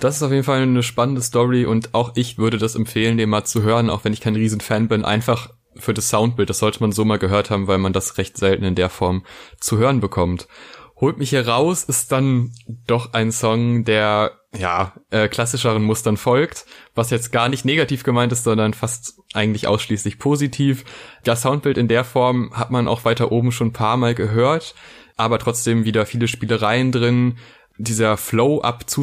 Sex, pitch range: male, 110-130 Hz